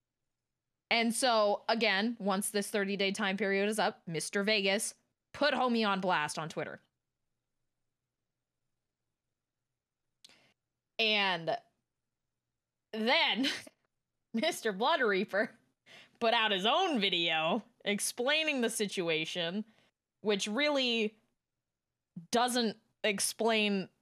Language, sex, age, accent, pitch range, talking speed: English, female, 20-39, American, 165-230 Hz, 85 wpm